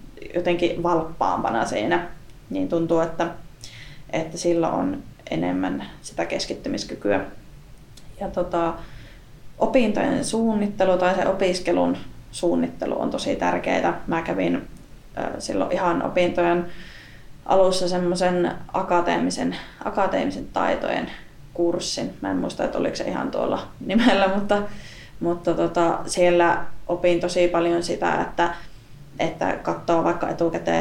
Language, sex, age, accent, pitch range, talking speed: Finnish, female, 20-39, native, 145-175 Hz, 105 wpm